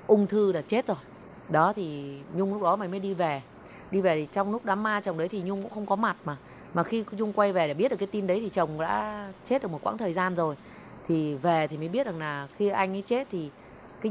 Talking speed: 270 wpm